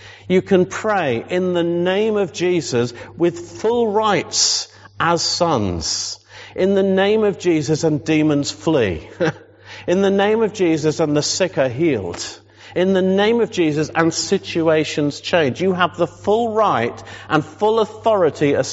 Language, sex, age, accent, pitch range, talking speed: English, male, 50-69, British, 105-170 Hz, 155 wpm